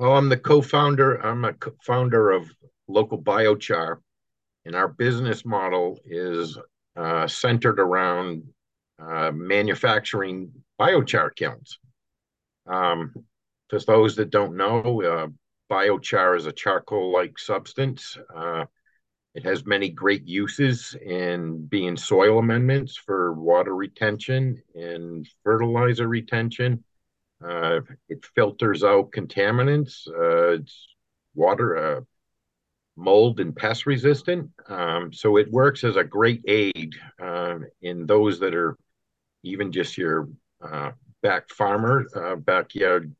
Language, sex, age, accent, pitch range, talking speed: English, male, 50-69, American, 90-125 Hz, 115 wpm